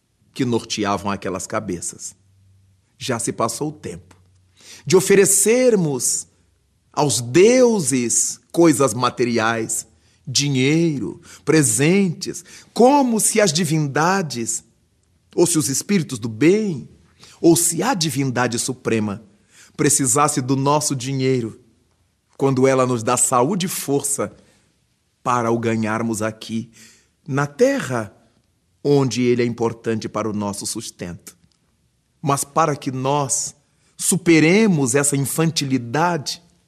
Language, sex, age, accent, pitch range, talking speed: Portuguese, male, 40-59, Brazilian, 110-160 Hz, 105 wpm